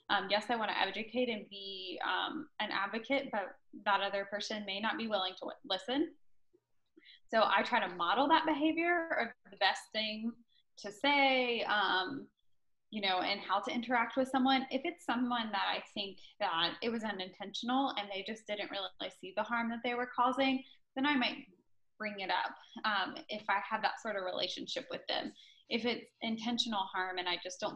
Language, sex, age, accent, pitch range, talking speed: English, female, 10-29, American, 200-270 Hz, 190 wpm